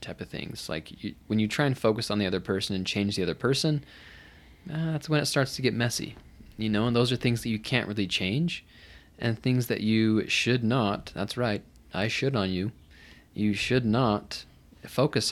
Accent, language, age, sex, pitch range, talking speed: American, English, 20-39, male, 95-120 Hz, 205 wpm